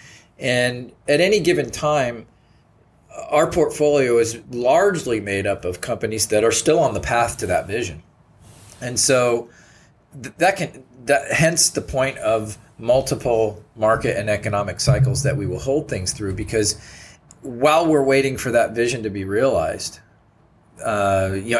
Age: 40-59